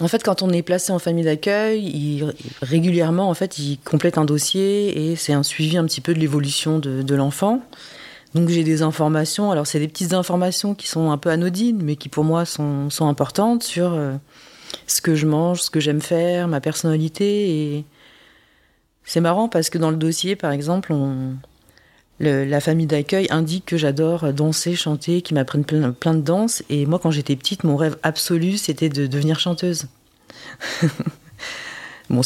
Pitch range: 145-175 Hz